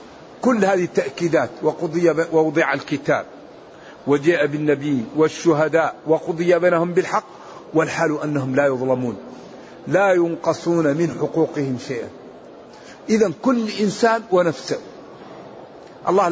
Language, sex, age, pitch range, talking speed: Arabic, male, 50-69, 160-200 Hz, 95 wpm